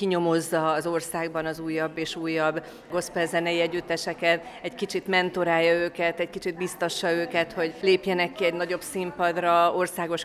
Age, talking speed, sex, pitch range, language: 30-49, 140 wpm, female, 165-180 Hz, Hungarian